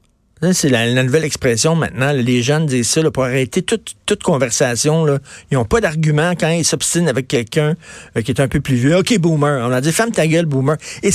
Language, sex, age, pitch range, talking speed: French, male, 50-69, 120-160 Hz, 230 wpm